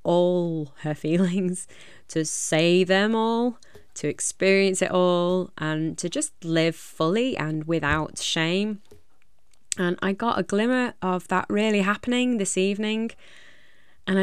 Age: 20-39